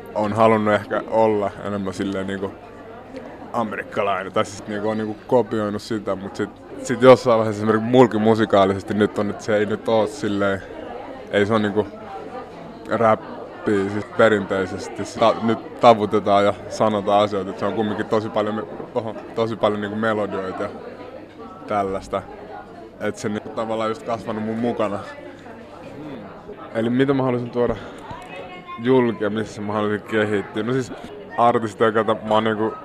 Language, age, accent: Finnish, 20-39, native